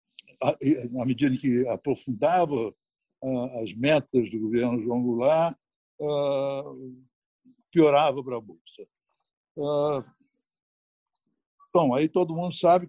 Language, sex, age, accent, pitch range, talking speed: Portuguese, male, 60-79, Brazilian, 125-175 Hz, 95 wpm